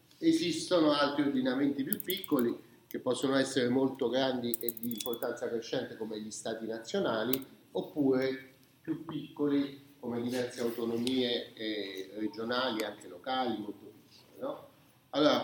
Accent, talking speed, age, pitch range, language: native, 120 wpm, 40-59, 125-200 Hz, Italian